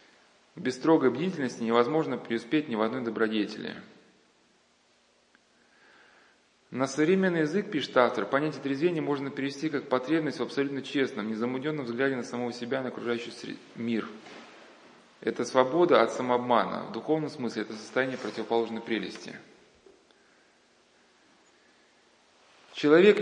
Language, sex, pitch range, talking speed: Russian, male, 115-155 Hz, 110 wpm